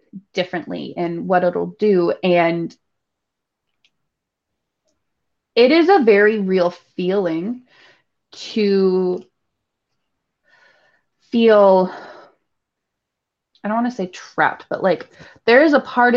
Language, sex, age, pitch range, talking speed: English, female, 20-39, 185-250 Hz, 95 wpm